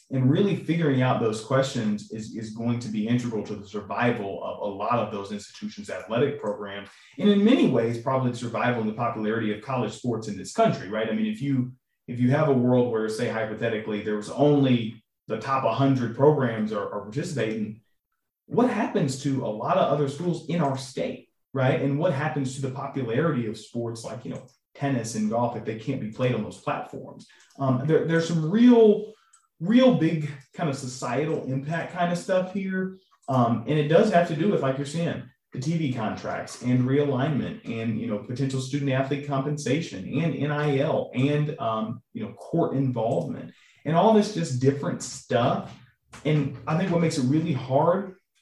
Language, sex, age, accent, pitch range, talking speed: English, male, 30-49, American, 115-155 Hz, 190 wpm